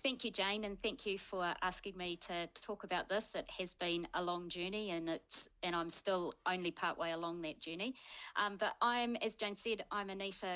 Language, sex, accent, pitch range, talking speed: English, female, Australian, 170-195 Hz, 215 wpm